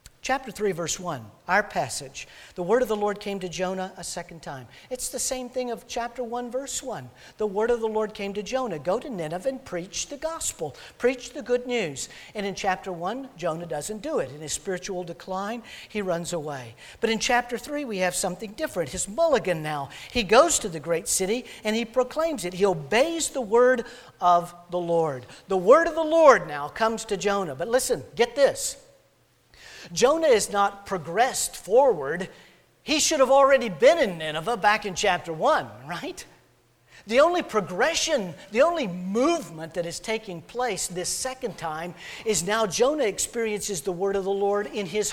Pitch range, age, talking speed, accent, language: 180-250 Hz, 50-69, 190 wpm, American, English